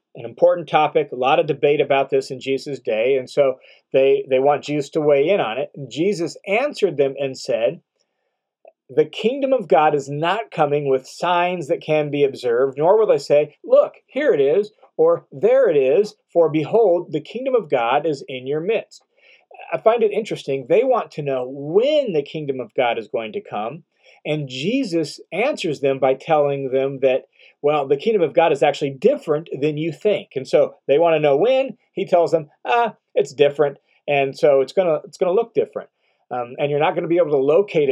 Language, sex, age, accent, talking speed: English, male, 40-59, American, 210 wpm